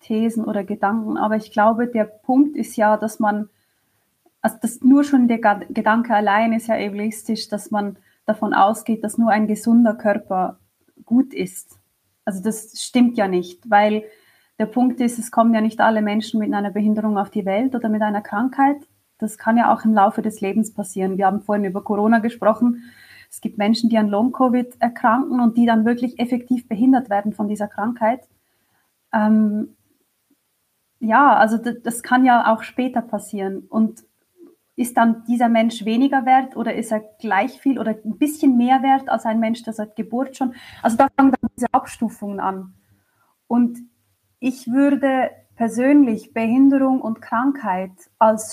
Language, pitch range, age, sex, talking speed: German, 210-250 Hz, 20-39, female, 170 wpm